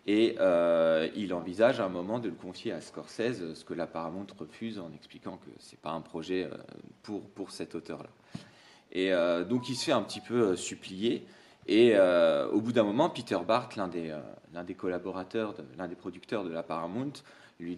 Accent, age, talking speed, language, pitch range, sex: French, 30-49, 205 wpm, French, 85-115 Hz, male